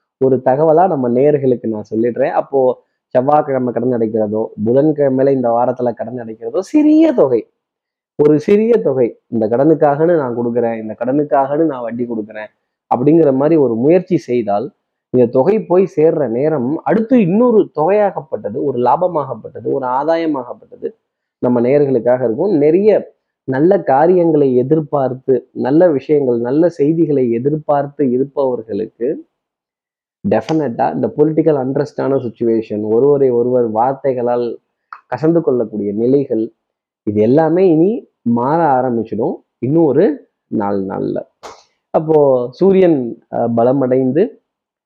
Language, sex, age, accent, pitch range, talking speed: Tamil, male, 20-39, native, 120-165 Hz, 110 wpm